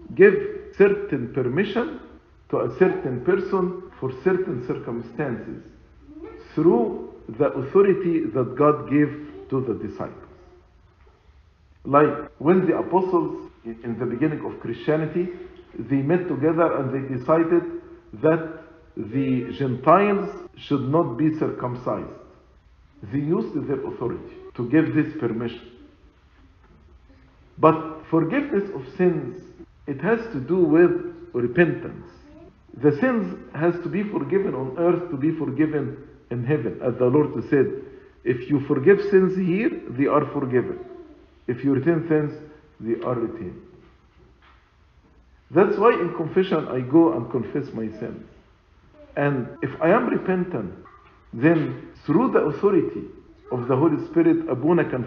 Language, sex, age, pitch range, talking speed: English, male, 50-69, 120-185 Hz, 125 wpm